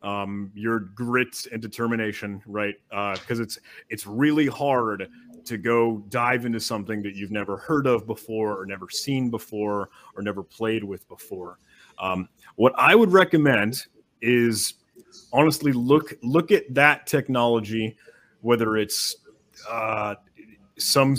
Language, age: English, 30-49